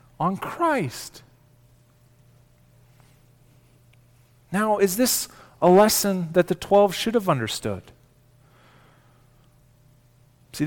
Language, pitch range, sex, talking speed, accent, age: English, 125-200 Hz, male, 80 wpm, American, 40-59